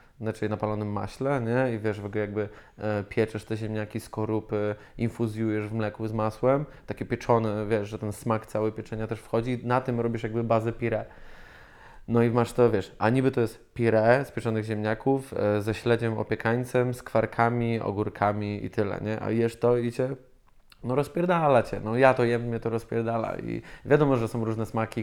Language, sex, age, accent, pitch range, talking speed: Polish, male, 20-39, native, 110-125 Hz, 185 wpm